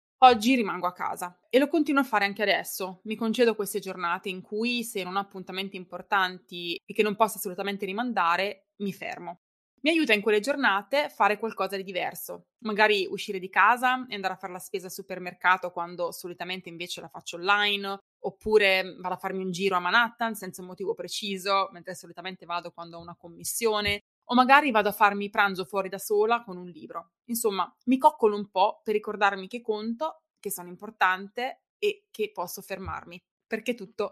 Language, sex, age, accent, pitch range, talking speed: Italian, female, 20-39, native, 185-225 Hz, 185 wpm